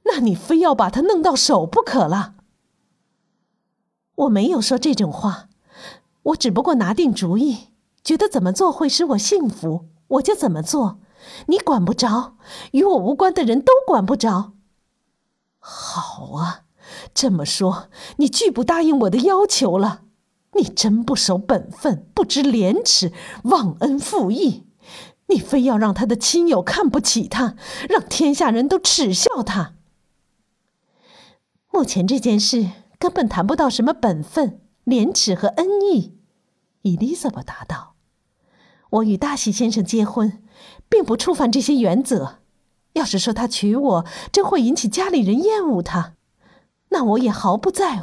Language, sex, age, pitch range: Chinese, female, 50-69, 200-290 Hz